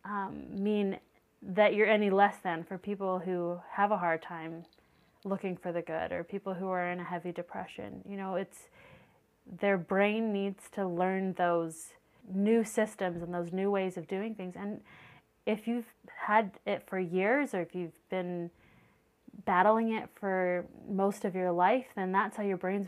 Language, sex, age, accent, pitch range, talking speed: English, female, 30-49, American, 180-205 Hz, 175 wpm